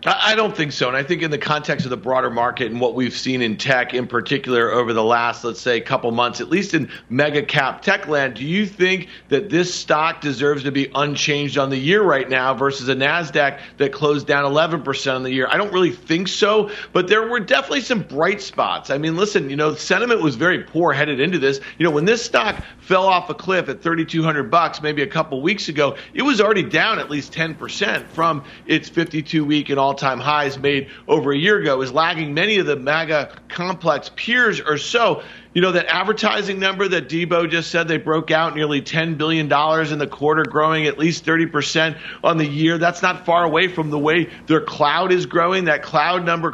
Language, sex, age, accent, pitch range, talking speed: English, male, 40-59, American, 140-170 Hz, 220 wpm